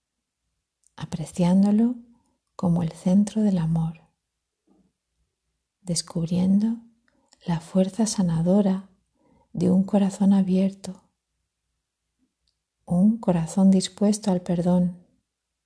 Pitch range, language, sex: 160-200 Hz, Spanish, female